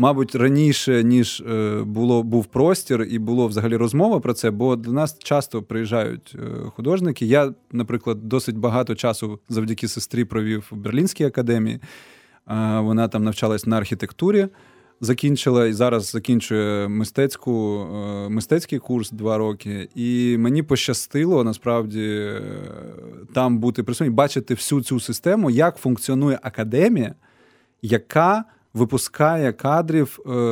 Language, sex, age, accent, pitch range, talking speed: Ukrainian, male, 20-39, native, 115-145 Hz, 120 wpm